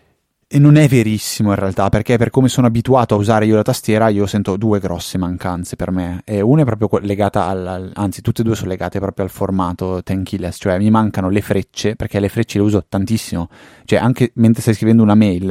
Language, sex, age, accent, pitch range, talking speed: Italian, male, 20-39, native, 95-110 Hz, 225 wpm